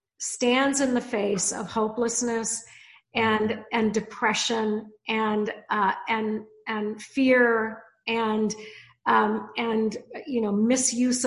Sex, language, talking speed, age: female, English, 105 wpm, 50-69